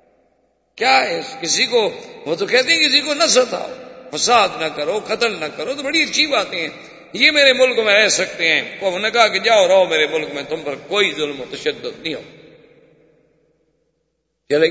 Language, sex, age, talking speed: Urdu, male, 50-69, 195 wpm